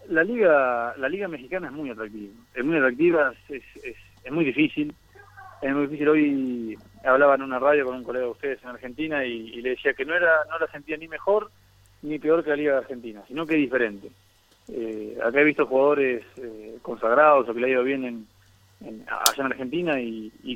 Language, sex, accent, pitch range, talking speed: Spanish, male, Argentinian, 110-145 Hz, 215 wpm